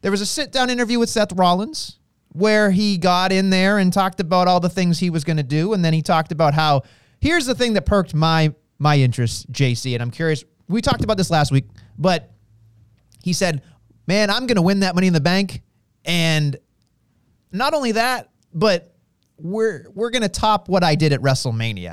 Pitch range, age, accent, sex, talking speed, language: 145-205 Hz, 30-49, American, male, 210 wpm, English